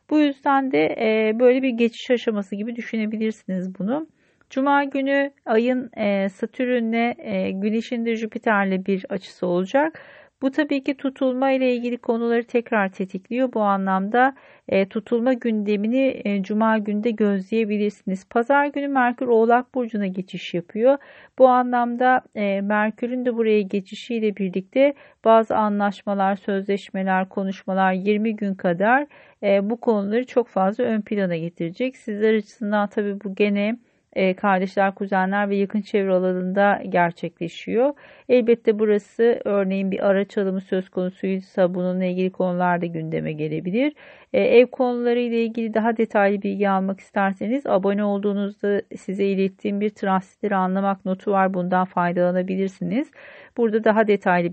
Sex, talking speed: female, 125 wpm